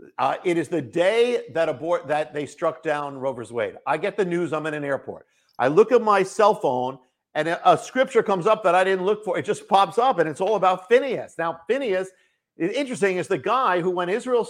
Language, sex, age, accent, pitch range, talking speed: English, male, 50-69, American, 160-200 Hz, 230 wpm